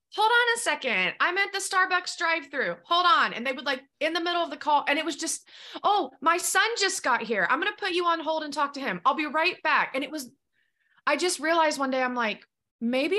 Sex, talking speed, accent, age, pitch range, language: female, 265 wpm, American, 20-39, 200-285 Hz, English